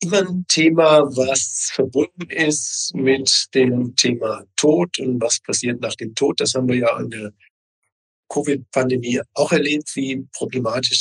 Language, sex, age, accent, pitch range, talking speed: German, male, 50-69, German, 120-140 Hz, 145 wpm